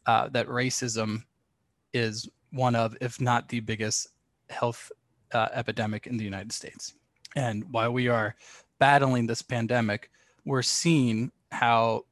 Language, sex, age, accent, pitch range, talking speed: English, male, 20-39, American, 110-125 Hz, 135 wpm